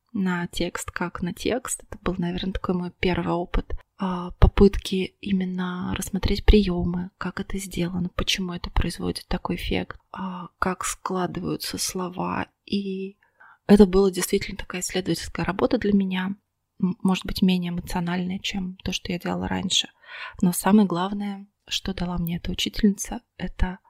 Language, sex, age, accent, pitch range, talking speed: Russian, female, 20-39, native, 175-200 Hz, 140 wpm